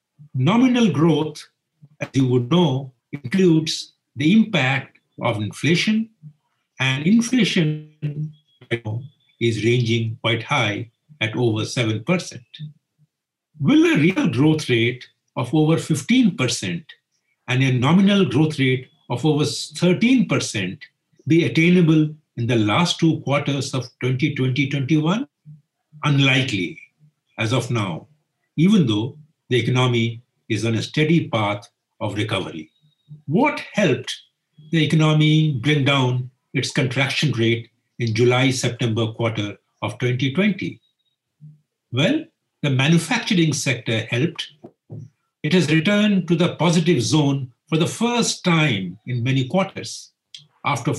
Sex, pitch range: male, 125-160 Hz